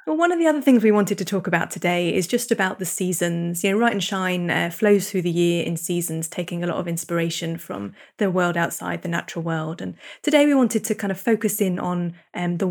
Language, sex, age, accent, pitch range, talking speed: English, female, 20-39, British, 175-210 Hz, 250 wpm